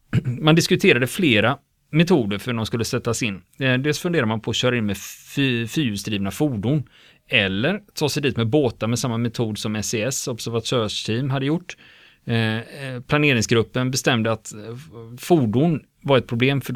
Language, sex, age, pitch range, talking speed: Swedish, male, 30-49, 110-135 Hz, 150 wpm